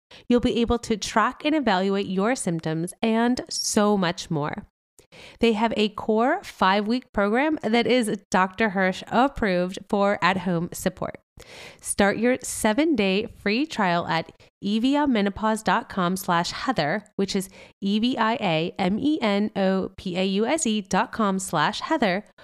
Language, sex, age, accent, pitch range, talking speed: English, female, 30-49, American, 190-240 Hz, 130 wpm